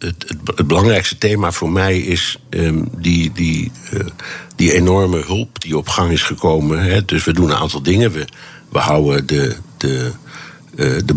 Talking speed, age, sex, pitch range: 150 wpm, 60-79, male, 85-110 Hz